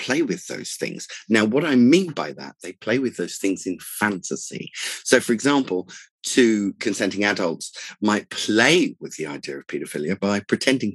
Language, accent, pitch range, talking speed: English, British, 105-155 Hz, 175 wpm